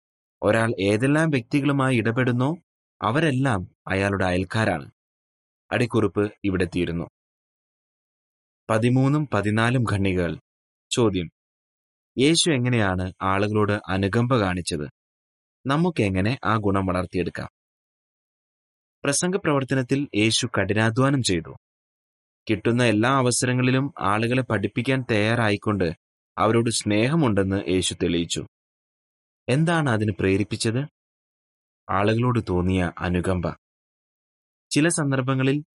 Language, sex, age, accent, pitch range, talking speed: Malayalam, male, 30-49, native, 95-130 Hz, 75 wpm